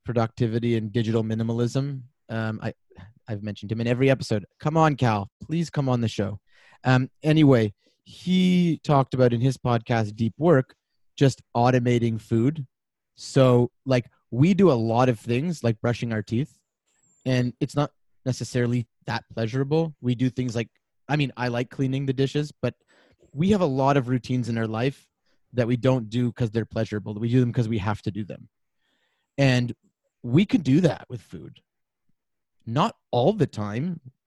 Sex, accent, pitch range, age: male, American, 115-135 Hz, 30-49